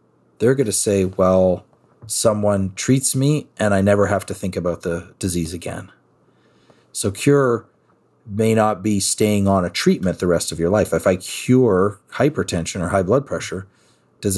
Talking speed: 170 wpm